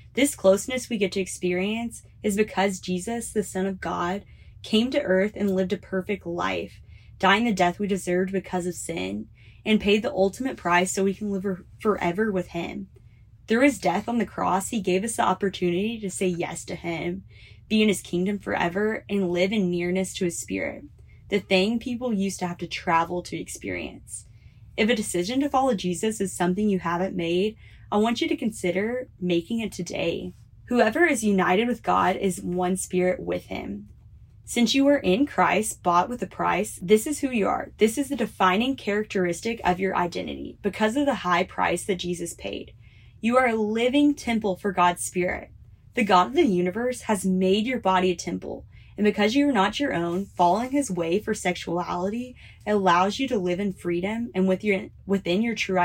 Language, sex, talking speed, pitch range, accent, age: English, female, 195 wpm, 175-220 Hz, American, 10-29